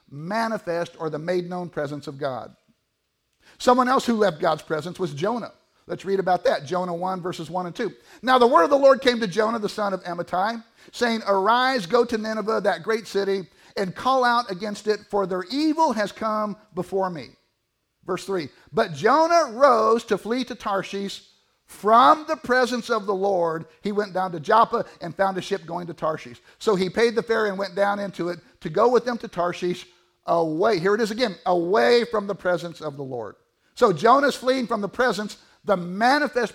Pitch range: 175-235 Hz